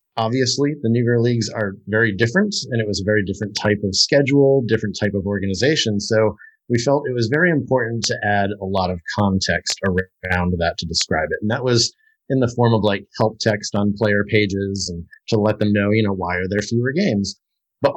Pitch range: 100-125 Hz